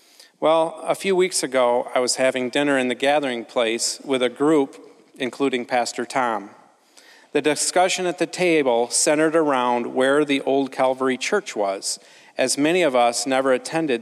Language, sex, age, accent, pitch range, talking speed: English, male, 40-59, American, 125-155 Hz, 165 wpm